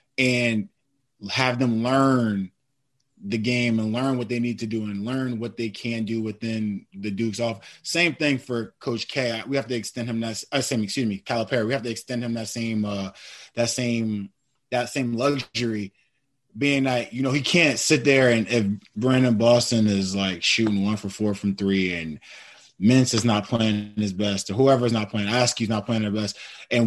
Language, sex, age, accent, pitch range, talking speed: English, male, 20-39, American, 115-135 Hz, 200 wpm